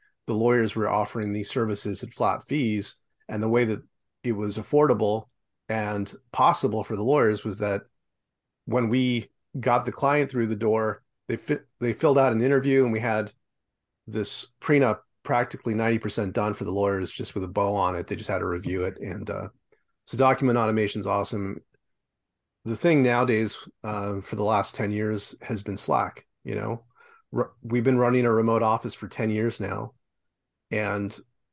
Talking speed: 180 wpm